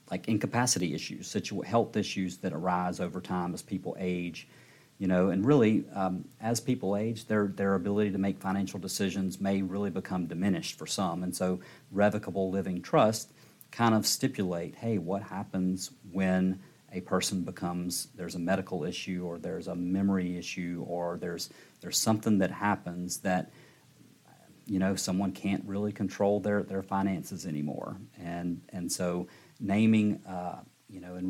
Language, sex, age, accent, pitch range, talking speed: English, male, 40-59, American, 90-100 Hz, 160 wpm